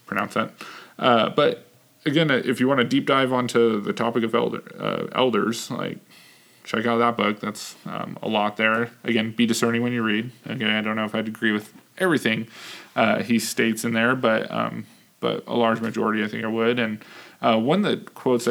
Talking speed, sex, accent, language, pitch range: 210 wpm, male, American, English, 110-120 Hz